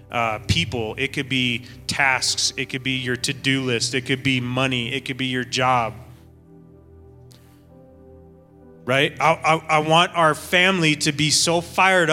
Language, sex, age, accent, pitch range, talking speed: English, male, 30-49, American, 130-195 Hz, 160 wpm